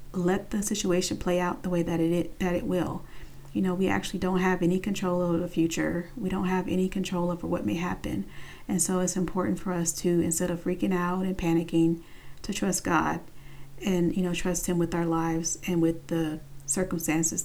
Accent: American